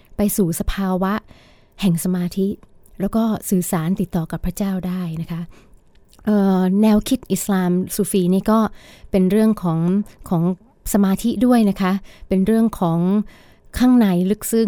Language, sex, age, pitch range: Thai, female, 20-39, 175-210 Hz